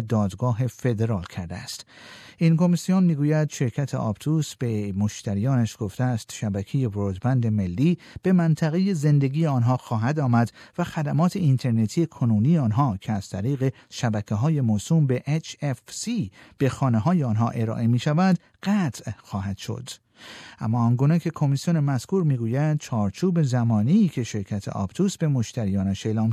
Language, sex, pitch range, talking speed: Persian, male, 110-155 Hz, 135 wpm